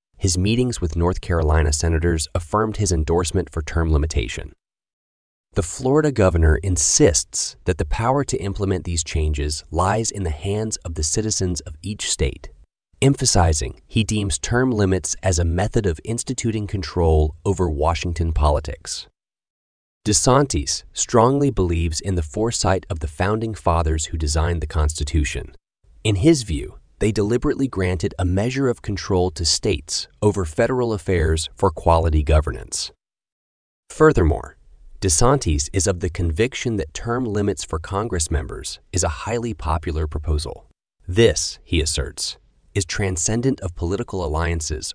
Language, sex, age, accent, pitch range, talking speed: English, male, 30-49, American, 80-105 Hz, 140 wpm